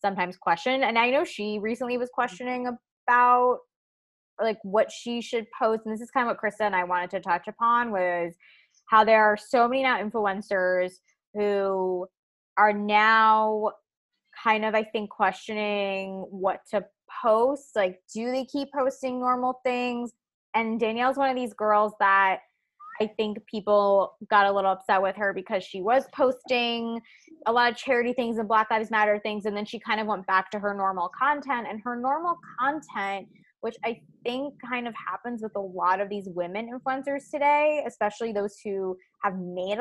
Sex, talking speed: female, 180 wpm